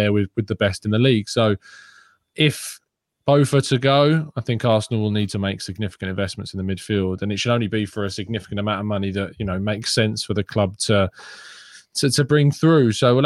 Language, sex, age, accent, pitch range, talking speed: English, male, 20-39, British, 105-125 Hz, 230 wpm